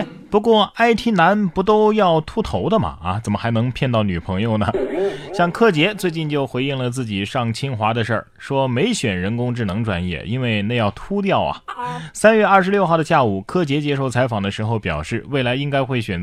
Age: 30-49